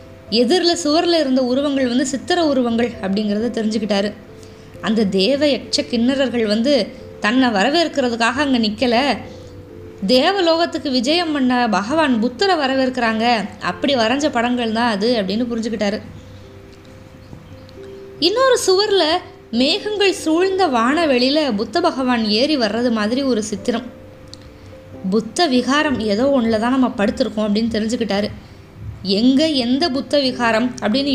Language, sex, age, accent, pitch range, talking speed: Tamil, female, 20-39, native, 210-275 Hz, 110 wpm